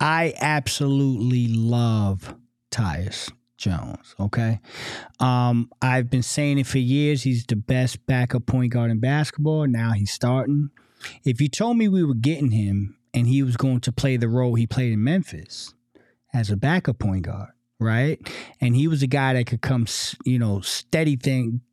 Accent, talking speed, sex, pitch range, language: American, 170 wpm, male, 120-150 Hz, English